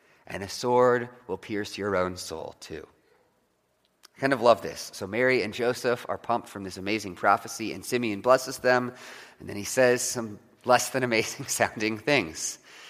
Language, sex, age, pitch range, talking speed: English, male, 30-49, 110-150 Hz, 175 wpm